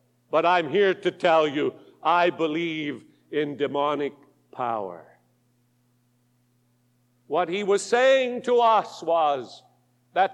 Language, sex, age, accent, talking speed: English, male, 50-69, American, 110 wpm